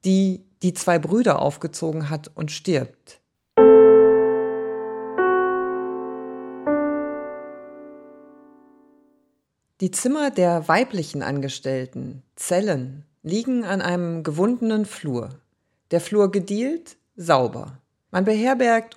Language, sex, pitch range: German, female, 150-220 Hz